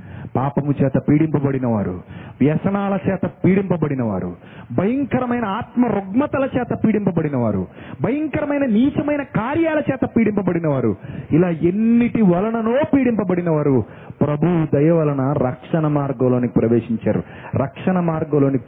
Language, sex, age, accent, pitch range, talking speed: Telugu, male, 30-49, native, 135-220 Hz, 105 wpm